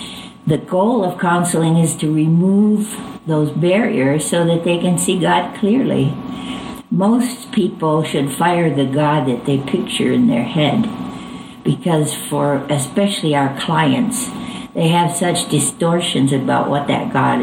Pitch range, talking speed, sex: 145-205 Hz, 140 wpm, female